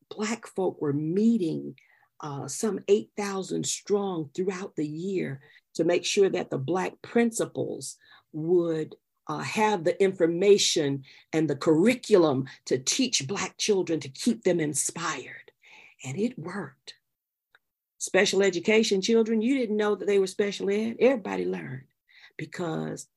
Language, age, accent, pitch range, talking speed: English, 50-69, American, 155-210 Hz, 130 wpm